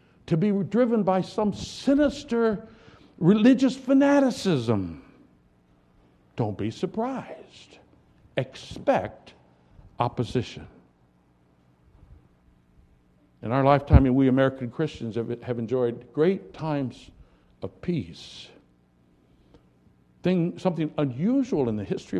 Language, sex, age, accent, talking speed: English, male, 60-79, American, 85 wpm